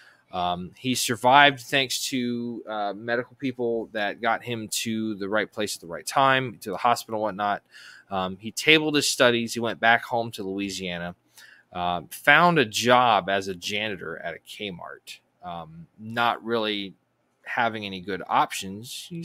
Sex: male